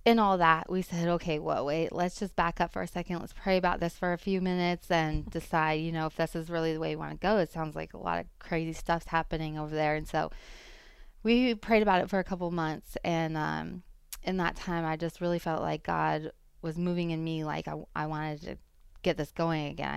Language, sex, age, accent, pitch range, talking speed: English, female, 20-39, American, 155-175 Hz, 250 wpm